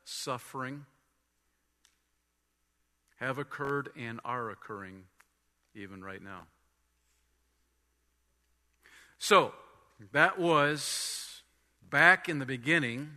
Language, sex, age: English, male, 50-69